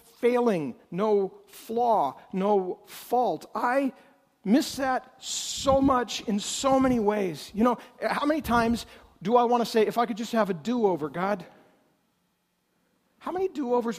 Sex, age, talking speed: male, 50-69, 150 wpm